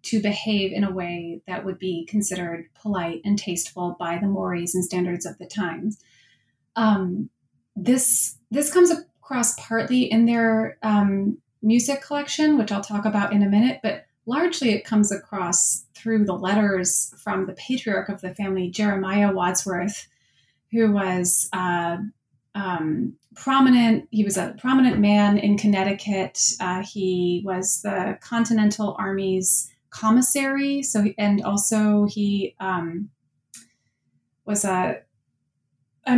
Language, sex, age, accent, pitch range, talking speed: English, female, 30-49, American, 190-220 Hz, 135 wpm